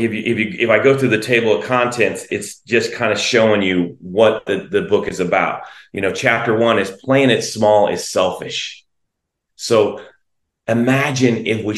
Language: English